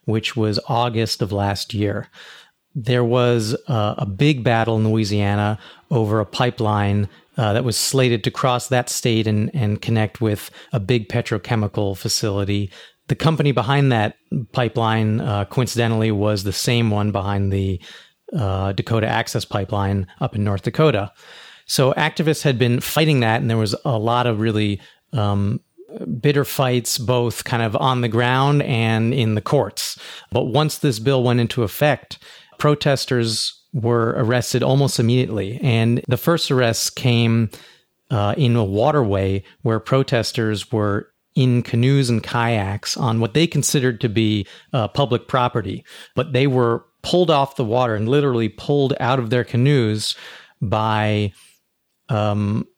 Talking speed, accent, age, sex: 150 wpm, American, 30-49, male